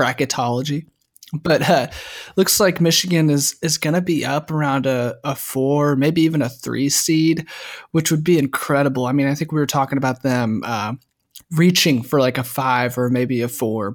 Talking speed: 185 wpm